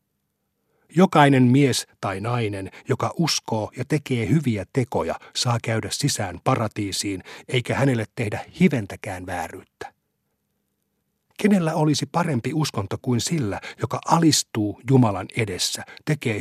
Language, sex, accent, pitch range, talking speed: Finnish, male, native, 110-145 Hz, 110 wpm